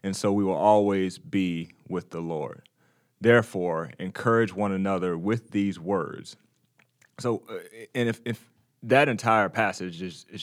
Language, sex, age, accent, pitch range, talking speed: English, male, 30-49, American, 95-110 Hz, 150 wpm